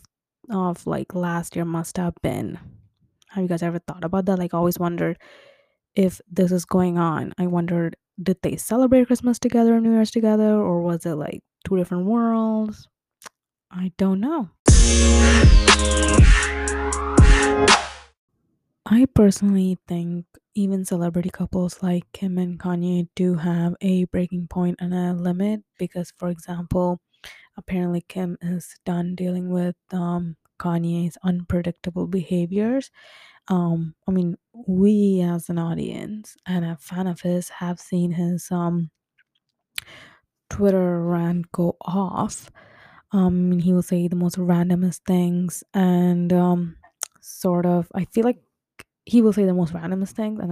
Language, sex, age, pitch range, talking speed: English, female, 20-39, 175-195 Hz, 140 wpm